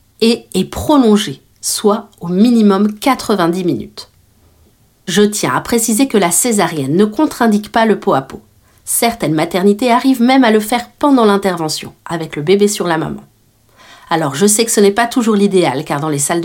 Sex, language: female, French